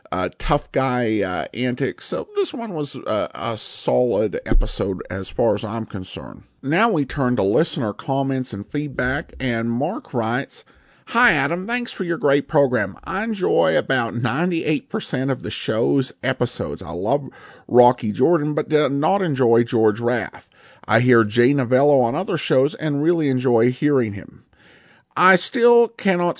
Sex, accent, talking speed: male, American, 155 wpm